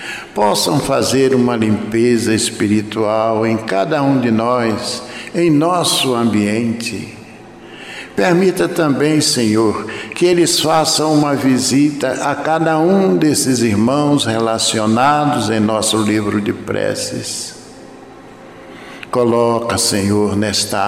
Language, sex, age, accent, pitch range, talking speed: Portuguese, male, 60-79, Brazilian, 105-140 Hz, 100 wpm